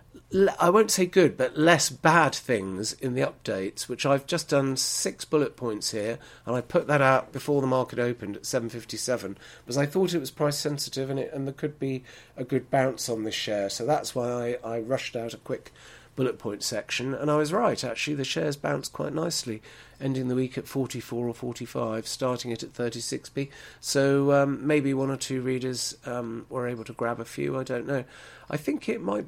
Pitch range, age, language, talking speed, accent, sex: 120-150 Hz, 40-59, English, 215 wpm, British, male